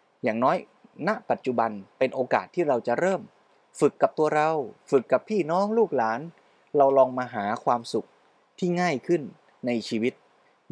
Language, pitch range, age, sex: Thai, 120-150 Hz, 20-39, male